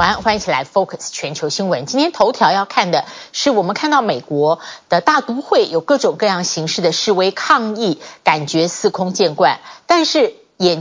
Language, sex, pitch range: Chinese, female, 180-290 Hz